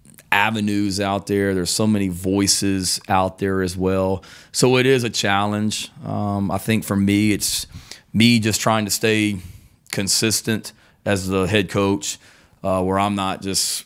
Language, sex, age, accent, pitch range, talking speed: English, male, 30-49, American, 95-105 Hz, 160 wpm